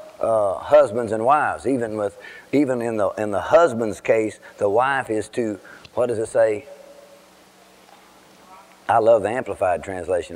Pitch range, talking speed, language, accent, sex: 110-140 Hz, 145 wpm, English, American, male